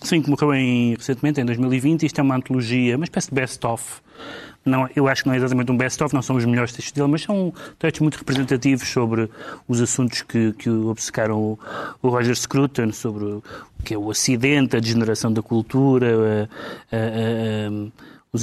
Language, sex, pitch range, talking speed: Portuguese, male, 120-135 Hz, 190 wpm